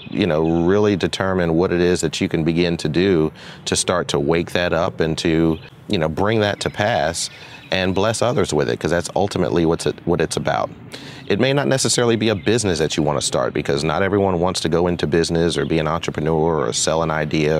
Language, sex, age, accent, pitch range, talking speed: English, male, 30-49, American, 80-95 Hz, 230 wpm